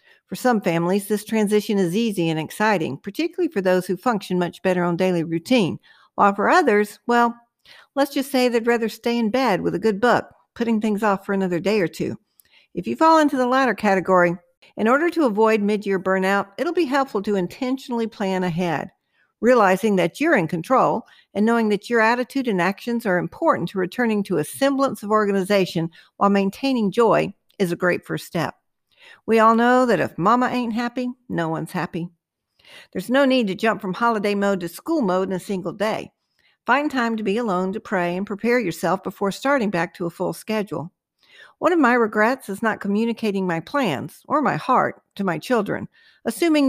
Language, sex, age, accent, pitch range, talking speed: English, female, 60-79, American, 185-245 Hz, 195 wpm